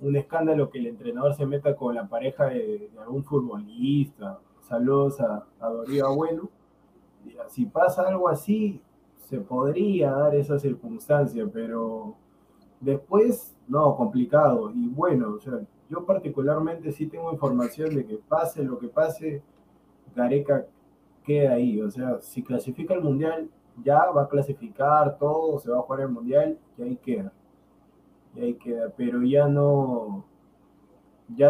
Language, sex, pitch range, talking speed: Spanish, male, 130-160 Hz, 145 wpm